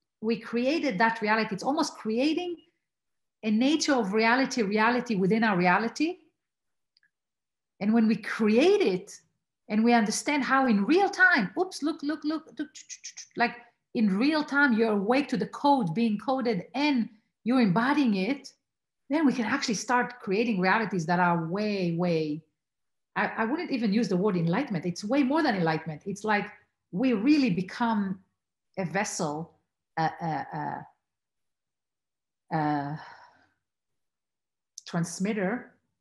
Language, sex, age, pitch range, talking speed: English, female, 40-59, 180-245 Hz, 135 wpm